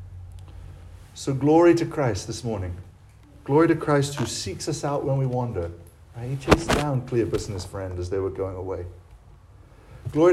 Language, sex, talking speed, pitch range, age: English, male, 170 wpm, 100-155 Hz, 40-59